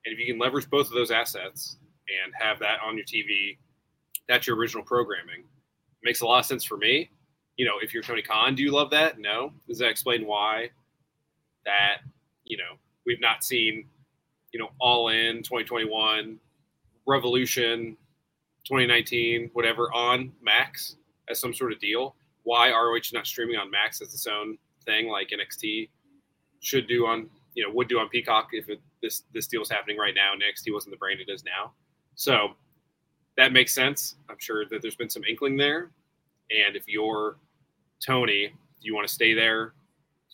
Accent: American